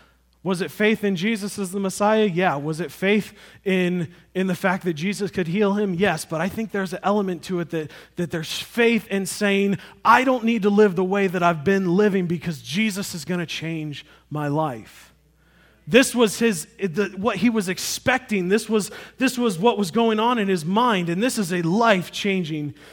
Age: 30-49